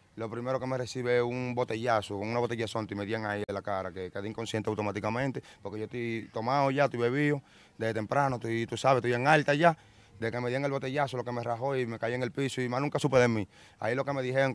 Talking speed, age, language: 265 wpm, 30-49, Spanish